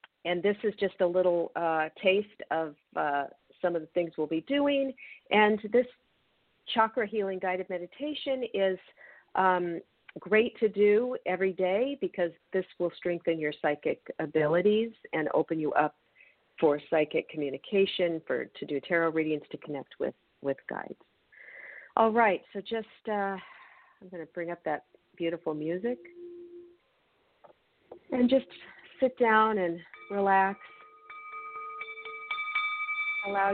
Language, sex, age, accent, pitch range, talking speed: English, female, 50-69, American, 175-265 Hz, 135 wpm